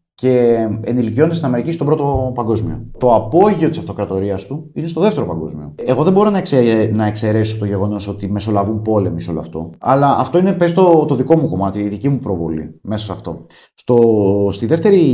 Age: 30-49